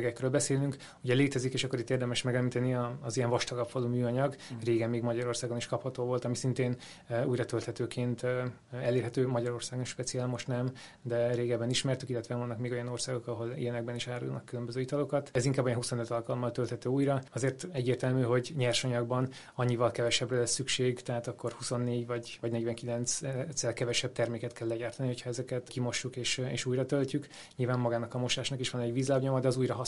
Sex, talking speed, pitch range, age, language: male, 175 wpm, 120-130 Hz, 20-39, Hungarian